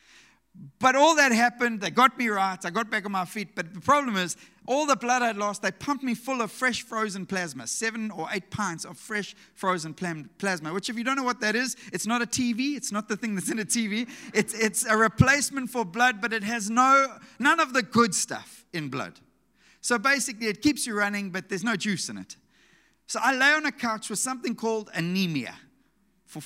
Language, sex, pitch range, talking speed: English, male, 190-245 Hz, 225 wpm